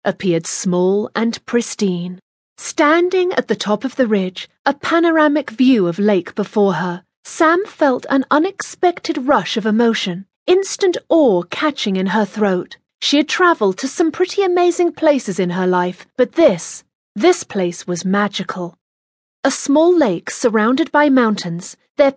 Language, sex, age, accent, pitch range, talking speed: English, female, 30-49, British, 190-285 Hz, 150 wpm